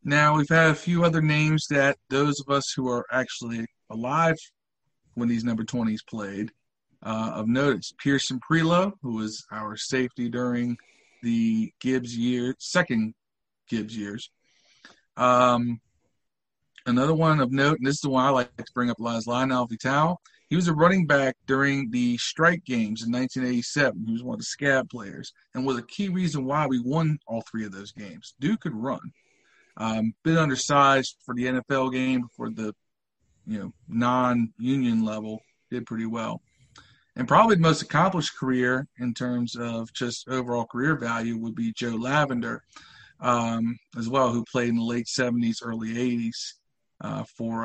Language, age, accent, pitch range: English, 40-59, American, 115-145 Hz